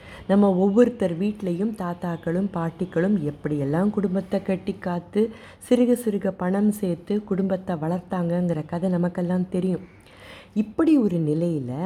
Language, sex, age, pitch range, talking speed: Tamil, female, 30-49, 165-215 Hz, 105 wpm